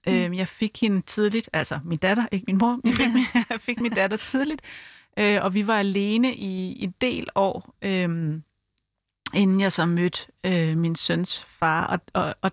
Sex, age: female, 30-49